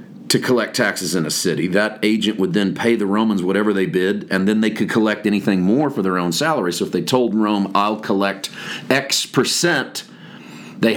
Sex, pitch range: male, 100-120 Hz